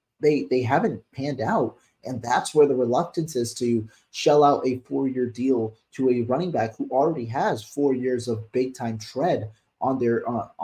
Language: English